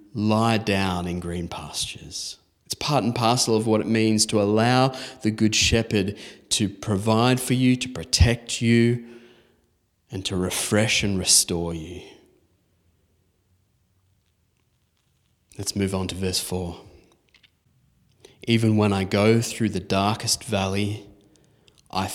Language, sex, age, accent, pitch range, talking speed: English, male, 30-49, Australian, 95-120 Hz, 125 wpm